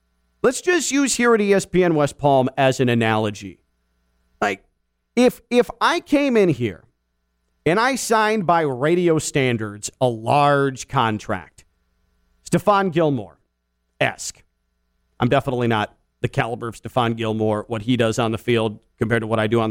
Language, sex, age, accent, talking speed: English, male, 40-59, American, 150 wpm